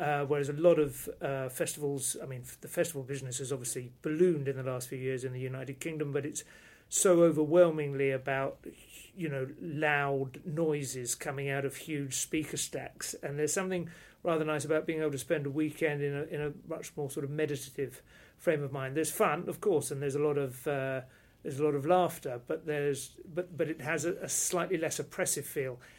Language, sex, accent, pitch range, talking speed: English, male, British, 140-165 Hz, 210 wpm